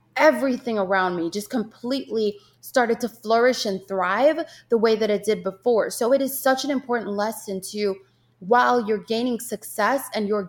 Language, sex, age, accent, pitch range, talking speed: English, female, 20-39, American, 200-250 Hz, 170 wpm